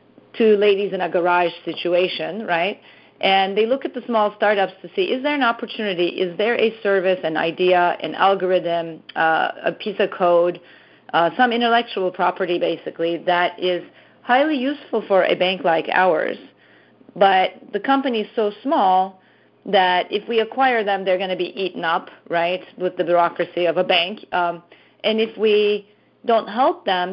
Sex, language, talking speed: female, English, 175 wpm